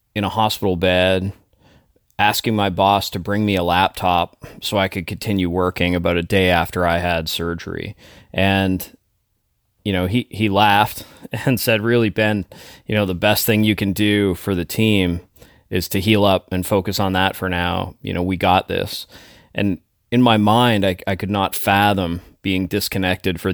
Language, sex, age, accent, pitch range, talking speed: English, male, 30-49, American, 90-105 Hz, 185 wpm